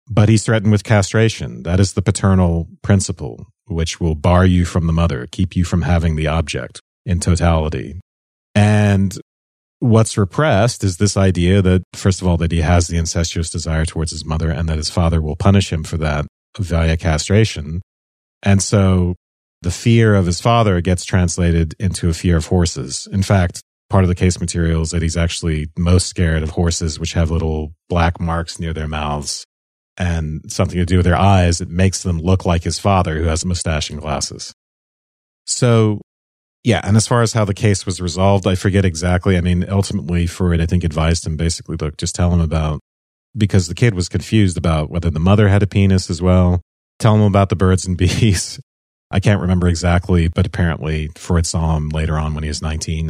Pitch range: 80-100 Hz